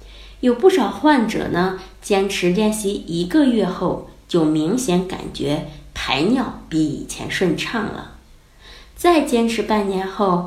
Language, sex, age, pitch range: Chinese, female, 20-39, 175-265 Hz